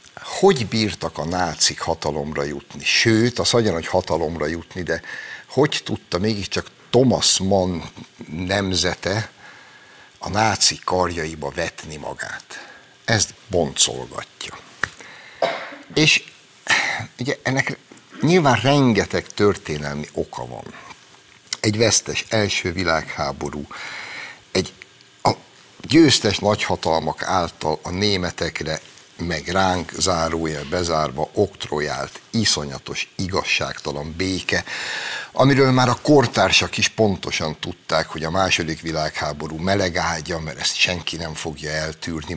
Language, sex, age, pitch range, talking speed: Hungarian, male, 60-79, 80-100 Hz, 100 wpm